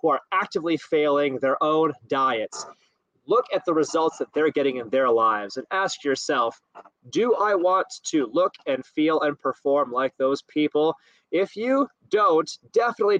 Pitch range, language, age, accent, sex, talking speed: 135-225 Hz, English, 30-49, American, male, 160 wpm